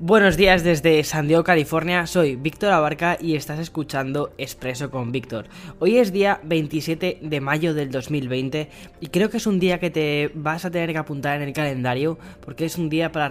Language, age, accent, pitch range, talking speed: Spanish, 10-29, Spanish, 130-160 Hz, 200 wpm